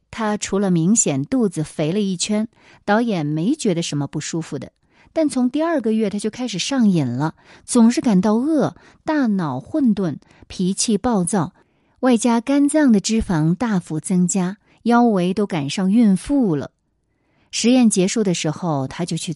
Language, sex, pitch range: Chinese, female, 170-250 Hz